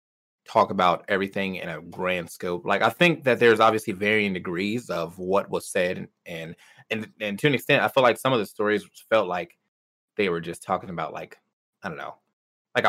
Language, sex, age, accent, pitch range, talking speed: English, male, 20-39, American, 95-120 Hz, 205 wpm